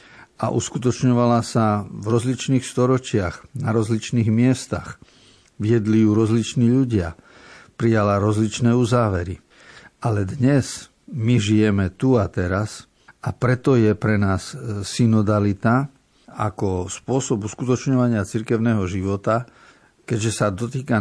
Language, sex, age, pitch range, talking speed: Slovak, male, 50-69, 100-120 Hz, 105 wpm